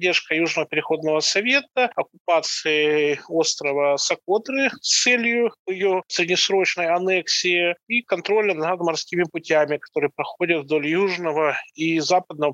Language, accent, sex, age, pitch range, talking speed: Russian, native, male, 20-39, 140-170 Hz, 110 wpm